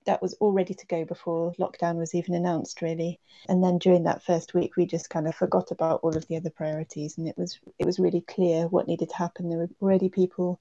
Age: 30-49